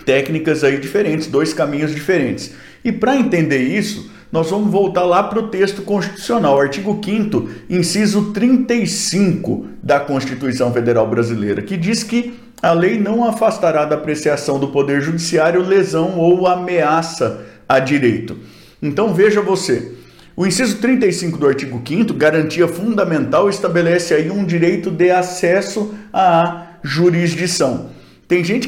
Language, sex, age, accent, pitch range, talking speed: Portuguese, male, 50-69, Brazilian, 135-195 Hz, 135 wpm